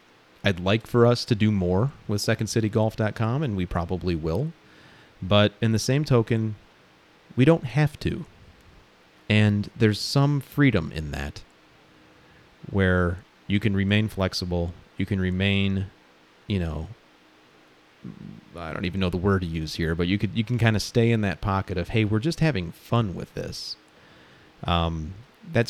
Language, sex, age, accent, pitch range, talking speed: English, male, 30-49, American, 80-110 Hz, 160 wpm